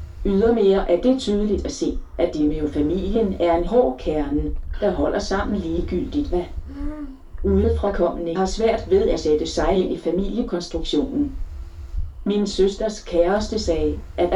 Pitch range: 155-205 Hz